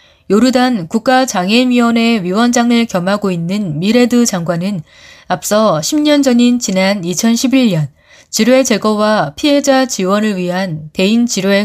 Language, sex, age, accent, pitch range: Korean, female, 20-39, native, 190-245 Hz